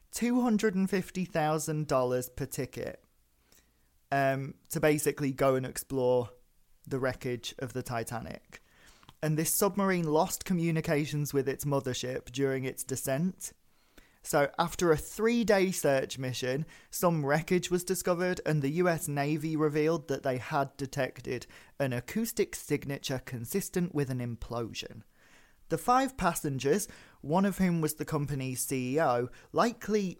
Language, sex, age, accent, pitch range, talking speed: English, male, 20-39, British, 135-180 Hz, 120 wpm